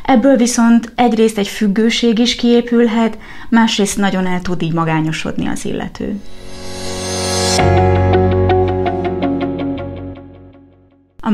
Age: 30-49